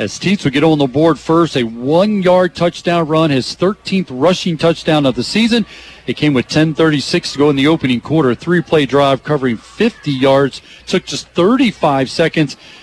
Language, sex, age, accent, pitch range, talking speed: English, male, 40-59, American, 145-185 Hz, 180 wpm